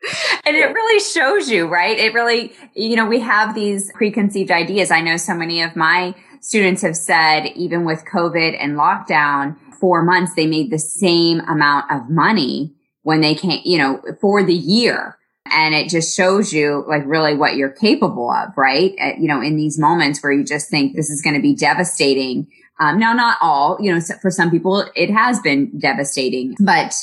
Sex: female